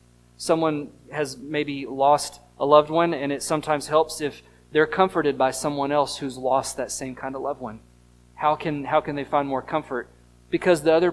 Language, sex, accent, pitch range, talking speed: English, male, American, 125-175 Hz, 195 wpm